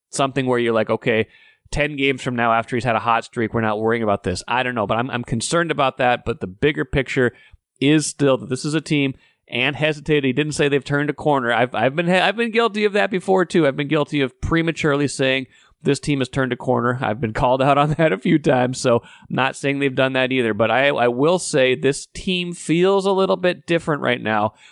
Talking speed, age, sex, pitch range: 250 wpm, 30-49, male, 120-145 Hz